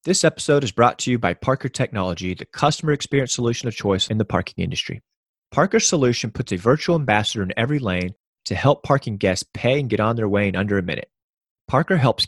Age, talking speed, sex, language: 30-49, 215 wpm, male, English